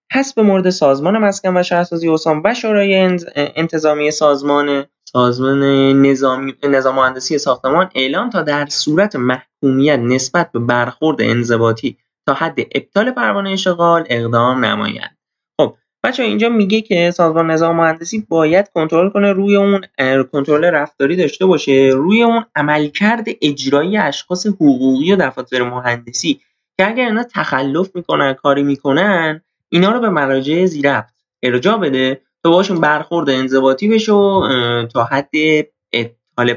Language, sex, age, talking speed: Persian, male, 20-39, 135 wpm